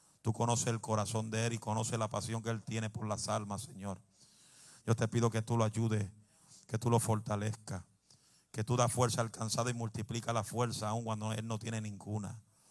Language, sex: Spanish, male